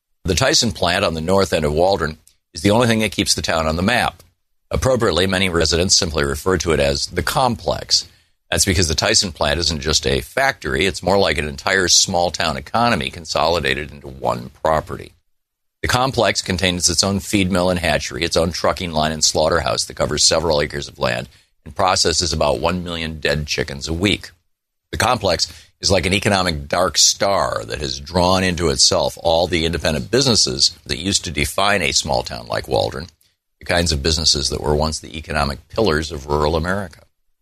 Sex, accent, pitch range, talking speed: male, American, 75-95 Hz, 190 wpm